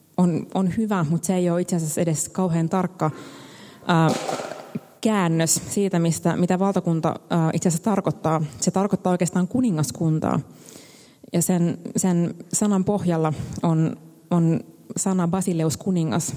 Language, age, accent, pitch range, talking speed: Finnish, 20-39, native, 160-190 Hz, 130 wpm